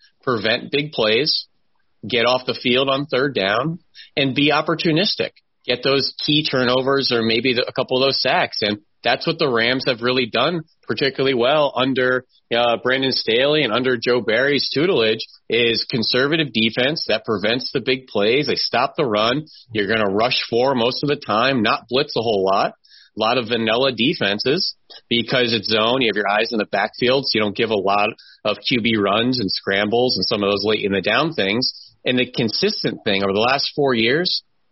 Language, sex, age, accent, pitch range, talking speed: English, male, 30-49, American, 115-145 Hz, 195 wpm